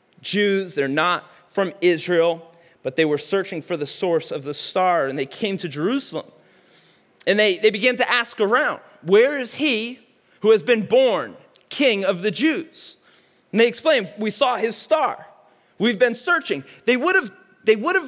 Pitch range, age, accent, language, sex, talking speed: 190-270 Hz, 30-49, American, English, male, 170 wpm